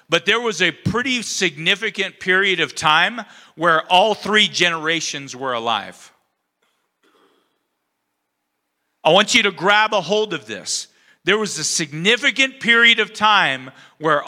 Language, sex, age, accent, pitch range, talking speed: English, male, 50-69, American, 180-235 Hz, 135 wpm